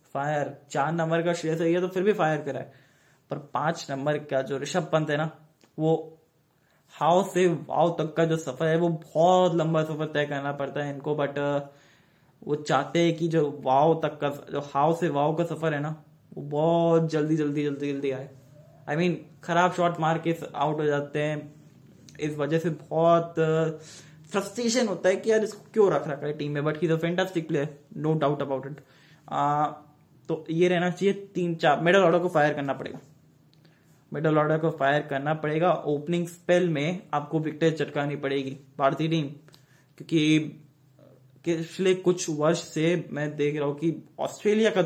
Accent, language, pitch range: native, Hindi, 145-165 Hz